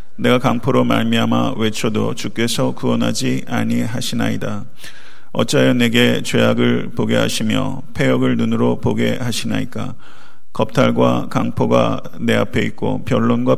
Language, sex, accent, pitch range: Korean, male, native, 100-125 Hz